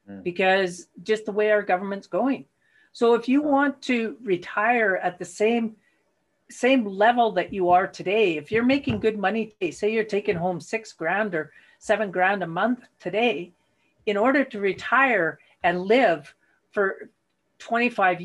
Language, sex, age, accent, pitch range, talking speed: English, female, 50-69, American, 190-240 Hz, 155 wpm